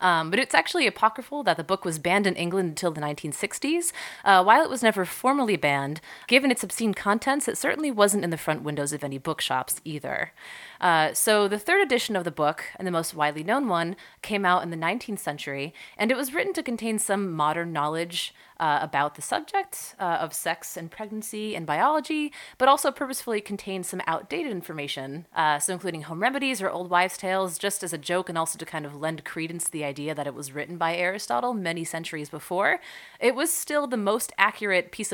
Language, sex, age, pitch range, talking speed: English, female, 30-49, 160-220 Hz, 210 wpm